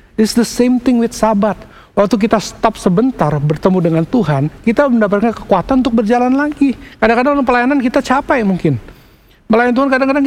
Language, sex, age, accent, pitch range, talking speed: English, male, 60-79, Indonesian, 160-240 Hz, 160 wpm